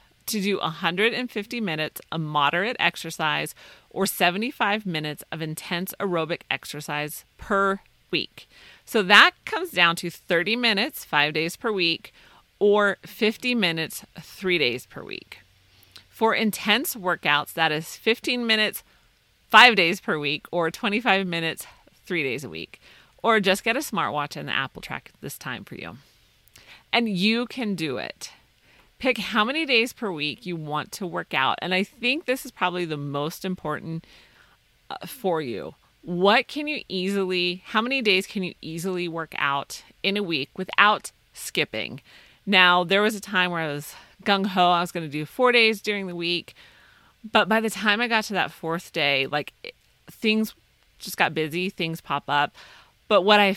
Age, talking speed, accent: 40-59, 170 wpm, American